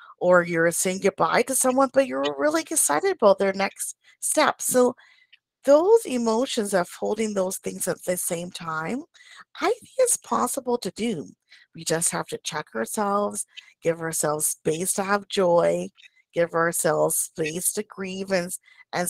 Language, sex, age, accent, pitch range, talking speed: English, female, 40-59, American, 175-235 Hz, 155 wpm